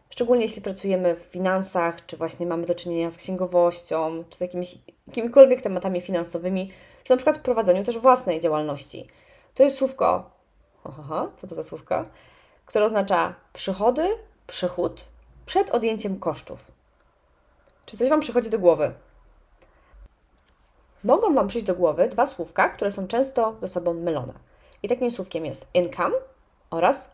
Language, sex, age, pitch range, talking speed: Polish, female, 20-39, 170-245 Hz, 140 wpm